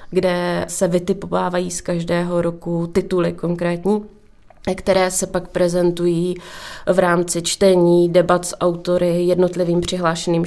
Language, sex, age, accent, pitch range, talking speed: Czech, female, 20-39, native, 165-180 Hz, 115 wpm